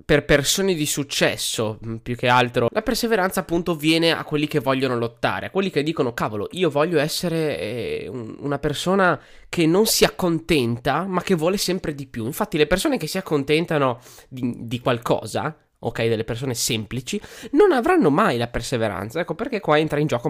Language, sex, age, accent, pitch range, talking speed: Italian, male, 20-39, native, 125-185 Hz, 180 wpm